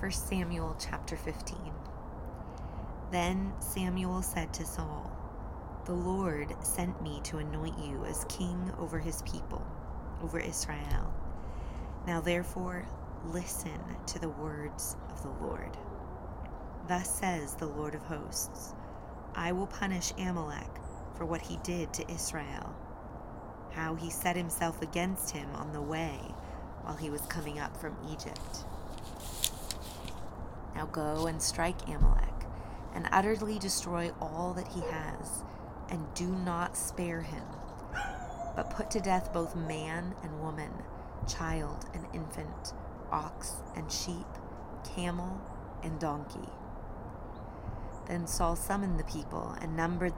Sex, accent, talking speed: female, American, 125 wpm